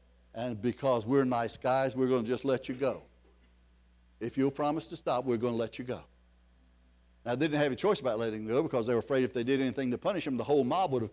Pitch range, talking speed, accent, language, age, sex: 120-175 Hz, 265 wpm, American, English, 60-79, male